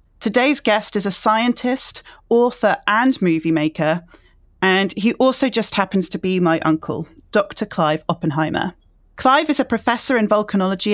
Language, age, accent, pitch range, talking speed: English, 40-59, British, 180-230 Hz, 150 wpm